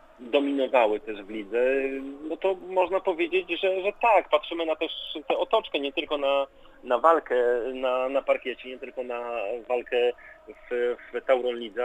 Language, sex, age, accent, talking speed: Polish, male, 30-49, native, 160 wpm